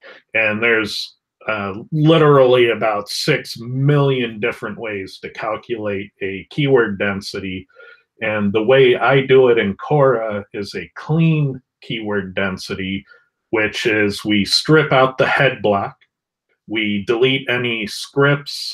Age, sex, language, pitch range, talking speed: 40-59, male, English, 100-140 Hz, 125 wpm